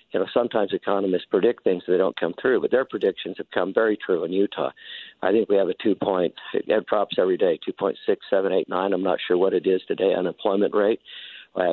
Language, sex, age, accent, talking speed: English, male, 50-69, American, 205 wpm